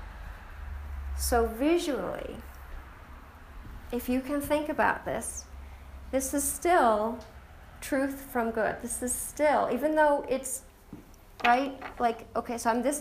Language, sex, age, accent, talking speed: English, female, 40-59, American, 115 wpm